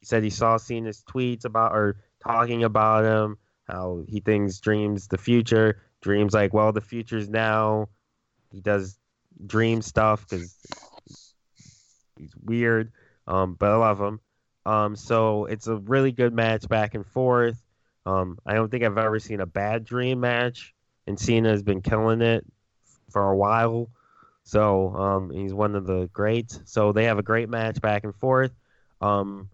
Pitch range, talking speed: 105-120 Hz, 165 wpm